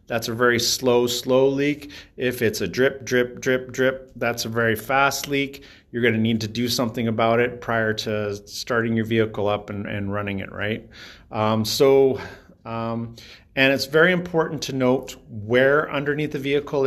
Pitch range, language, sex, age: 115-135 Hz, English, male, 40-59